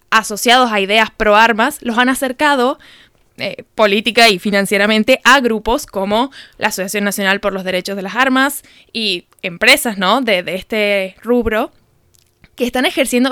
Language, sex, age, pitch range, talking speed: Spanish, female, 10-29, 205-245 Hz, 155 wpm